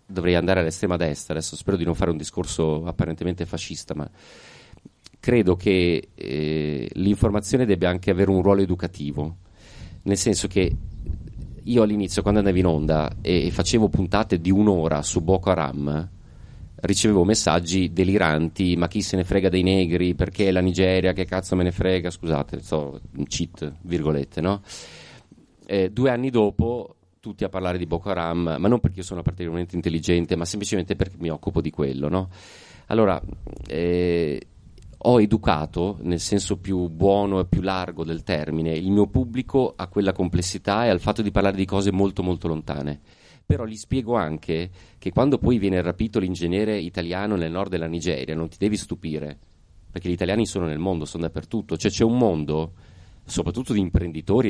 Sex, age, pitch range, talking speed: male, 30-49, 80-100 Hz, 170 wpm